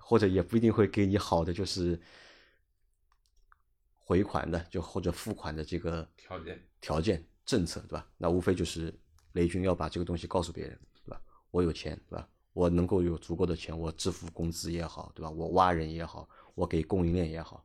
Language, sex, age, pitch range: Chinese, male, 30-49, 80-95 Hz